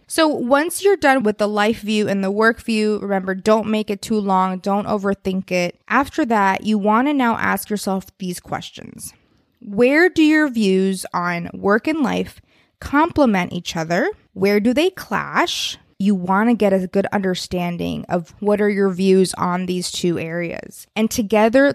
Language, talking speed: English, 175 wpm